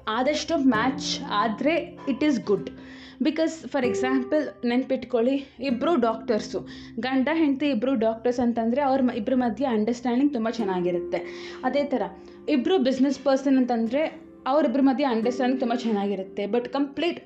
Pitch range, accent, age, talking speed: 220-270 Hz, native, 20-39, 125 wpm